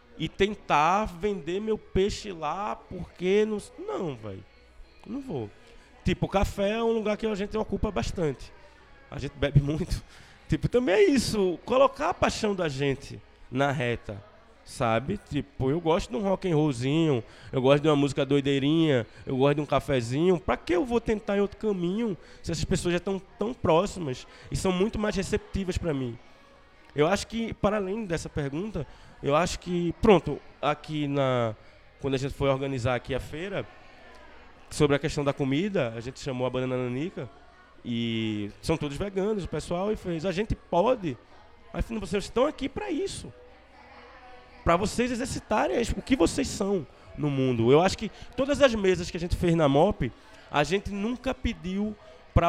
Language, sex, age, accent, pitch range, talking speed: Portuguese, male, 20-39, Brazilian, 140-205 Hz, 180 wpm